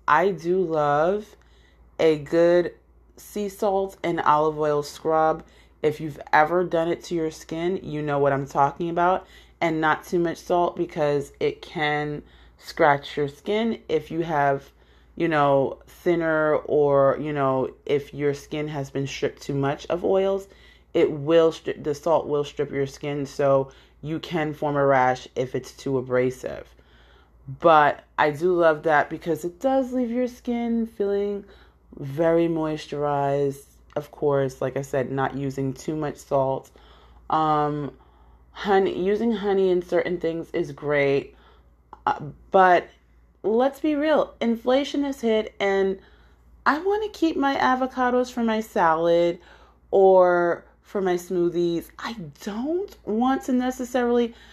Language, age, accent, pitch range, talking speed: English, 30-49, American, 140-195 Hz, 145 wpm